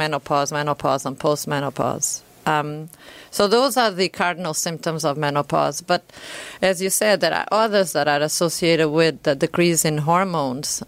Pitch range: 150-185 Hz